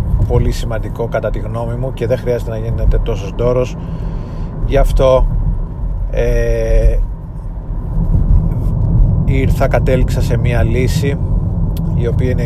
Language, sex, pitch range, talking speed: Greek, male, 100-125 Hz, 115 wpm